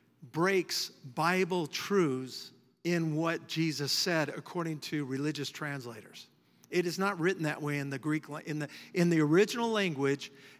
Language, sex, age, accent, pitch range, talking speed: English, male, 50-69, American, 150-190 Hz, 145 wpm